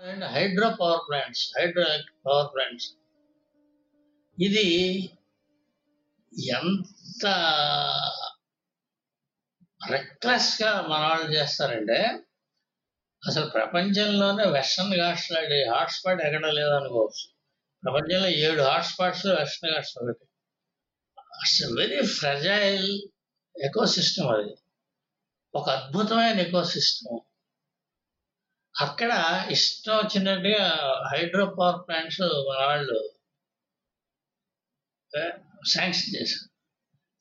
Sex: male